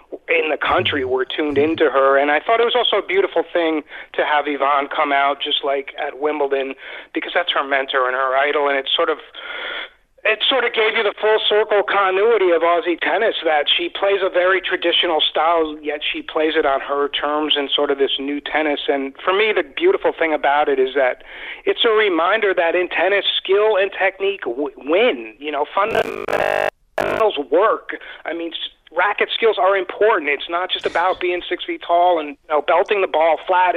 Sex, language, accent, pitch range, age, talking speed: male, English, American, 150-240 Hz, 40-59, 195 wpm